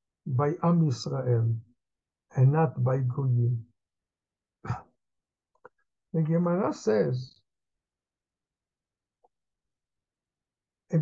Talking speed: 60 wpm